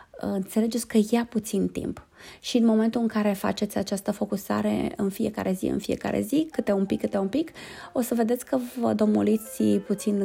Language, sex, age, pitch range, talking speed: Romanian, female, 20-39, 200-280 Hz, 185 wpm